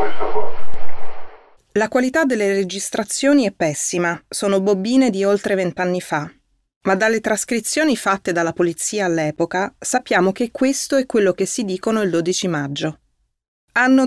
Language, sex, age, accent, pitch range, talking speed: Italian, female, 30-49, native, 170-230 Hz, 130 wpm